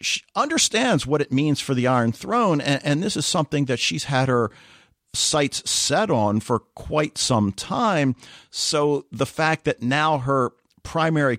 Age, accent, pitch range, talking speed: 50-69, American, 110-140 Hz, 170 wpm